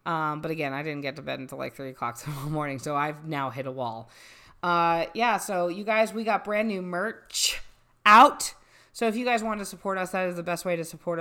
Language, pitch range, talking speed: English, 145-165 Hz, 250 wpm